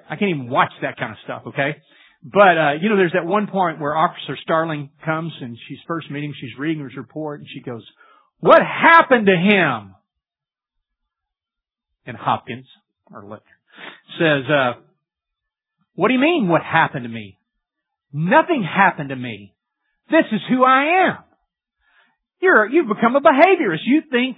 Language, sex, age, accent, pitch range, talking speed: English, male, 40-59, American, 145-215 Hz, 160 wpm